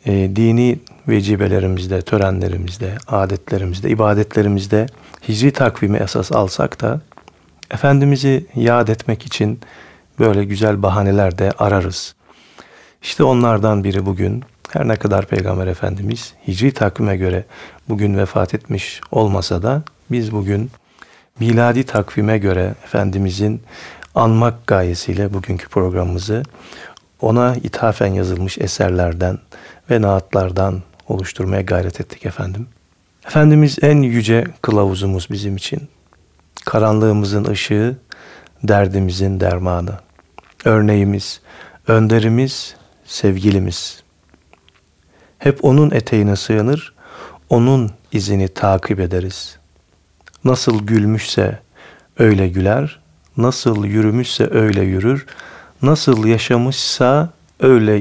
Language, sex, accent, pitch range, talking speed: Turkish, male, native, 95-115 Hz, 90 wpm